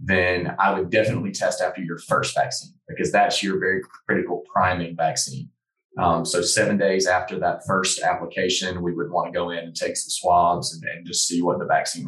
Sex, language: male, English